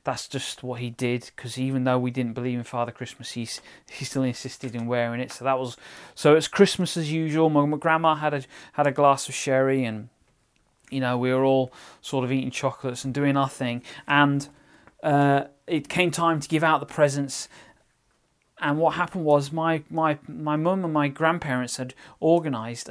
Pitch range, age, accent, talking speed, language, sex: 130-160 Hz, 30-49, British, 195 wpm, English, male